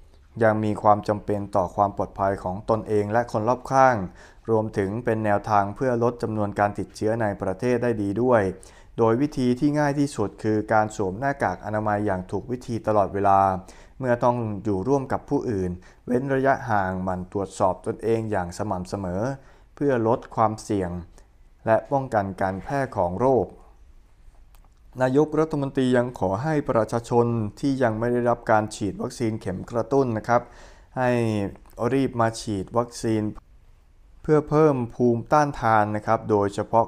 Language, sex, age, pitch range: Thai, male, 20-39, 100-120 Hz